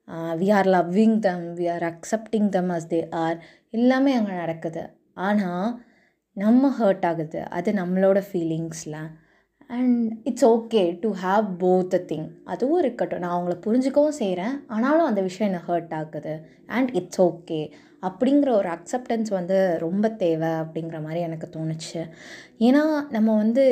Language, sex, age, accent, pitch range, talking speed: Tamil, female, 20-39, native, 175-235 Hz, 145 wpm